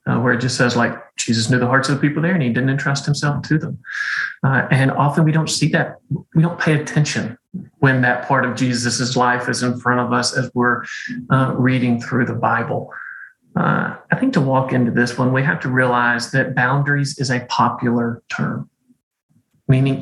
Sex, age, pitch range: male, 40-59, 125-145 Hz